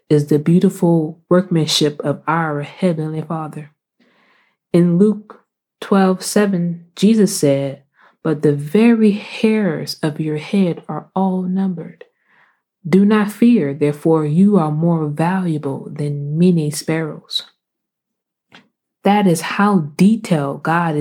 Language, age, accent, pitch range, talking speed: English, 20-39, American, 150-190 Hz, 115 wpm